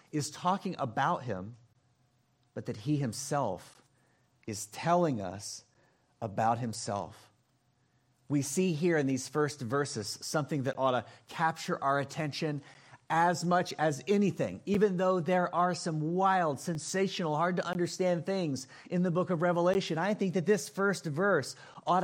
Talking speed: 145 wpm